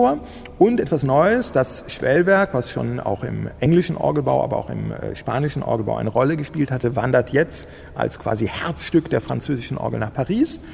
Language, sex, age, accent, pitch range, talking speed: German, male, 40-59, German, 115-155 Hz, 170 wpm